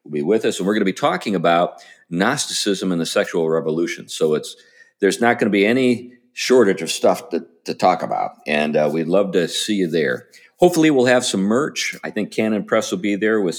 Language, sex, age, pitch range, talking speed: English, male, 50-69, 80-115 Hz, 225 wpm